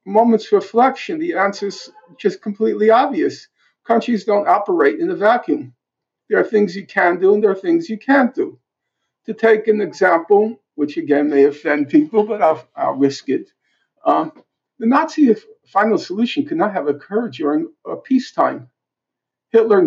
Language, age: English, 50-69